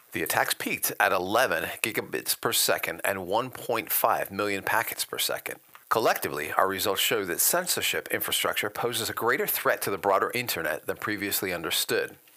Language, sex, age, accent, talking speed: English, male, 40-59, American, 155 wpm